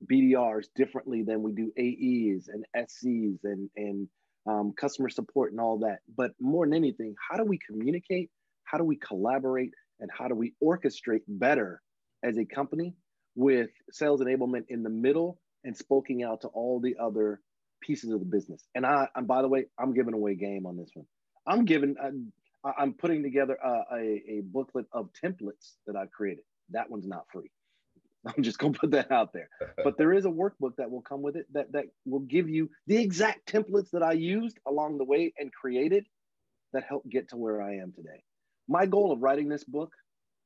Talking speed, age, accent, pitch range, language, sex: 200 wpm, 30-49, American, 105-145 Hz, English, male